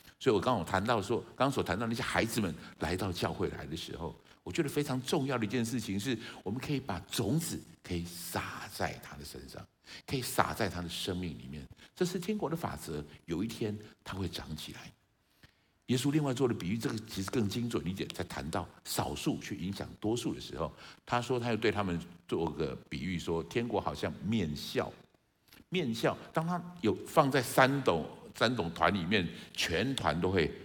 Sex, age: male, 60-79